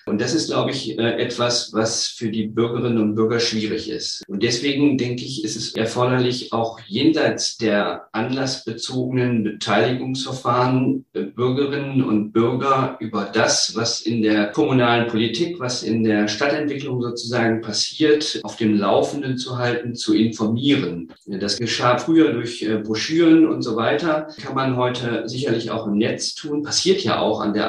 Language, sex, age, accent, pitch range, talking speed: German, male, 50-69, German, 105-125 Hz, 150 wpm